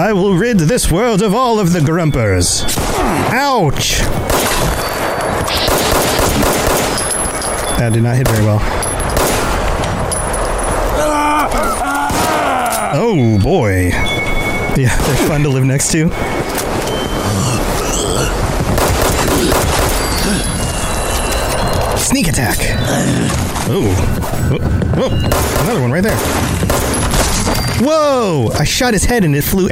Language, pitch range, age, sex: English, 105-155 Hz, 30-49, male